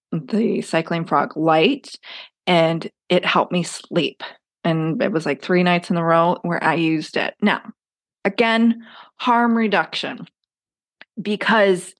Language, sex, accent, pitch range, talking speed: English, female, American, 165-200 Hz, 135 wpm